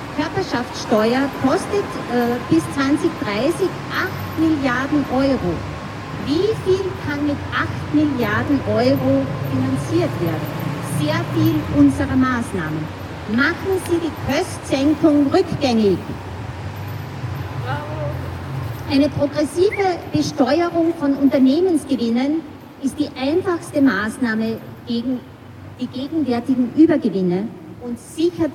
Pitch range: 210-300 Hz